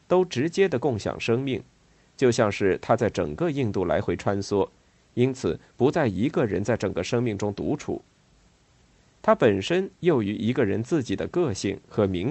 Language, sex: Chinese, male